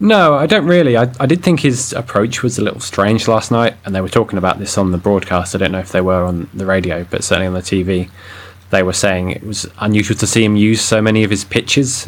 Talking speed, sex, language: 270 wpm, male, English